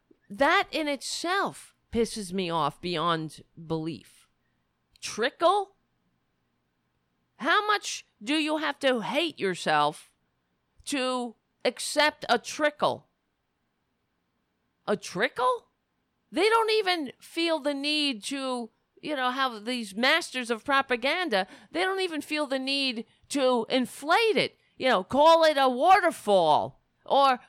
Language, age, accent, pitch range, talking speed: English, 40-59, American, 215-315 Hz, 115 wpm